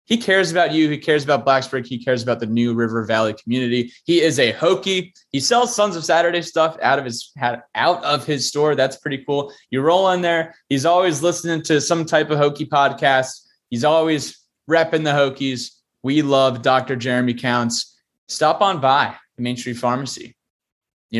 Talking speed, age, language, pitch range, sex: 190 wpm, 20-39, English, 125-165 Hz, male